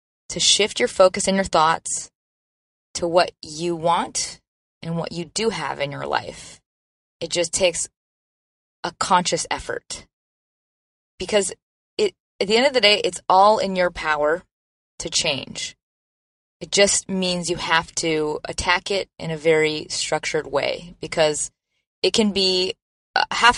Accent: American